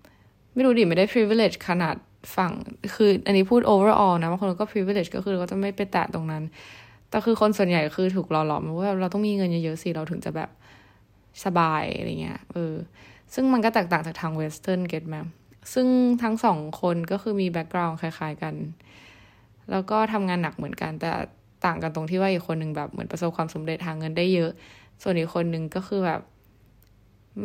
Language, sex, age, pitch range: Thai, female, 20-39, 155-200 Hz